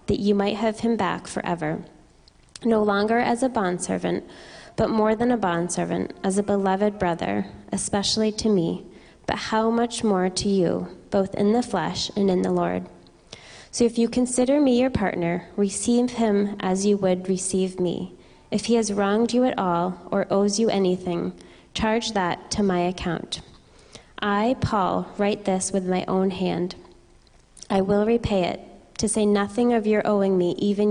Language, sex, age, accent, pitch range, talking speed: English, female, 20-39, American, 185-215 Hz, 170 wpm